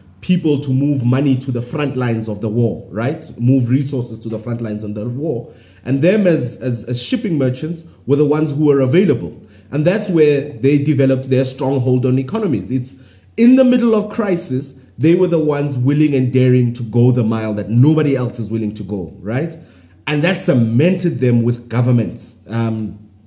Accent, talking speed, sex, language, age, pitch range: South African, 195 wpm, male, English, 30-49, 110-145 Hz